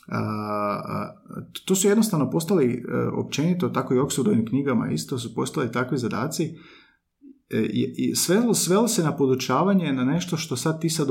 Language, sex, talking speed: Croatian, male, 155 wpm